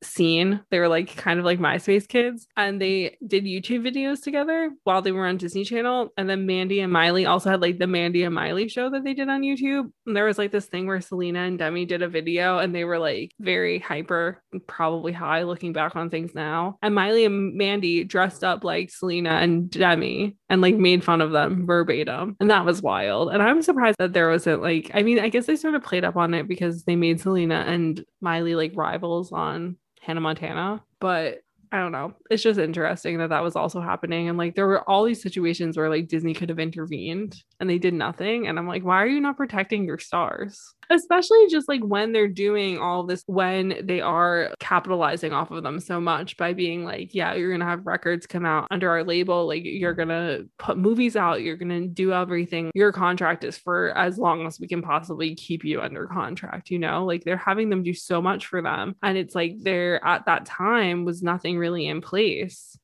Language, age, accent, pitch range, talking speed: English, 20-39, American, 170-200 Hz, 225 wpm